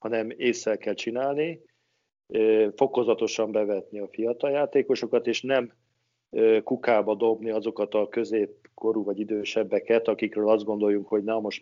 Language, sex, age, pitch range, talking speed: Hungarian, male, 50-69, 110-130 Hz, 125 wpm